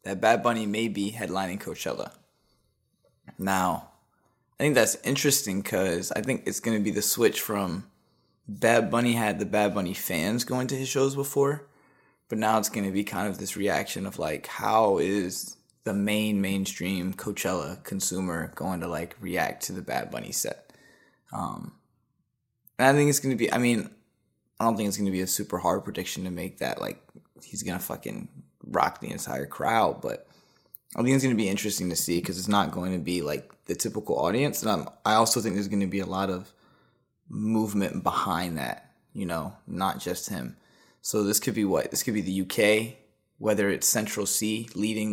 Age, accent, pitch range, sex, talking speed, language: 20-39, American, 95-115 Hz, male, 200 wpm, English